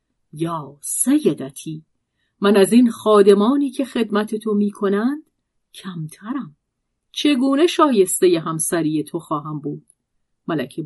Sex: female